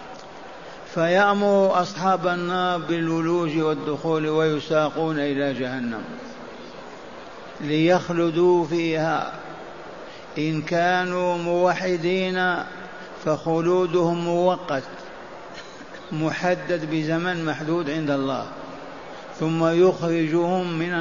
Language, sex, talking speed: Arabic, male, 65 wpm